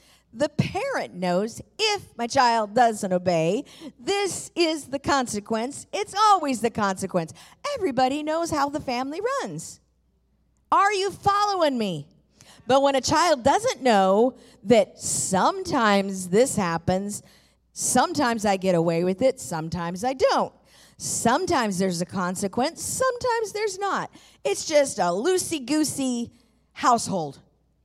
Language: English